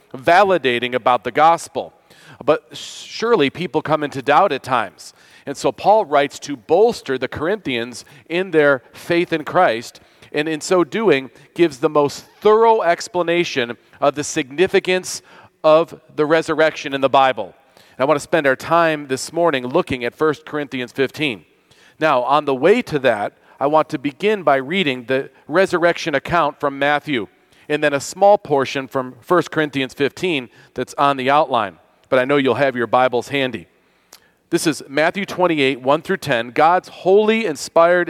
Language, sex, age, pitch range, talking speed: English, male, 40-59, 135-175 Hz, 165 wpm